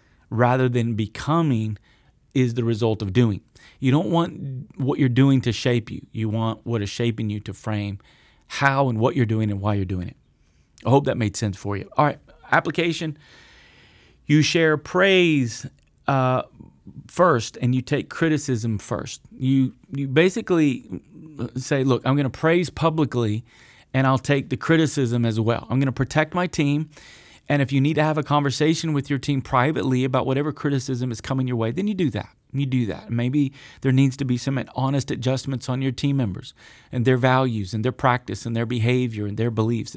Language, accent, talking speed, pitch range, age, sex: English, American, 190 wpm, 115-145 Hz, 40-59, male